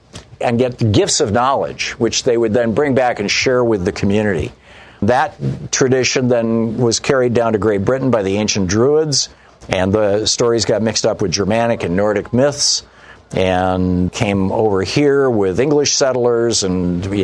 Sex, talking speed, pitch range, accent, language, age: male, 175 wpm, 100-125 Hz, American, English, 50-69